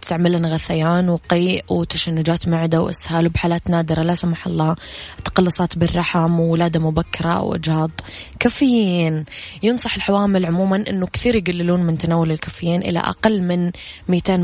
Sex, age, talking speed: female, 20-39, 125 wpm